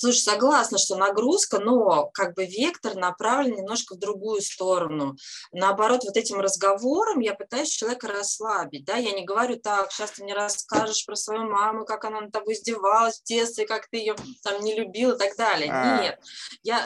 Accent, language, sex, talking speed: native, Russian, female, 180 wpm